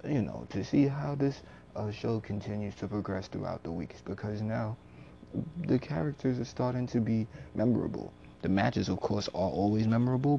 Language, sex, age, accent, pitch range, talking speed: English, male, 20-39, American, 95-115 Hz, 175 wpm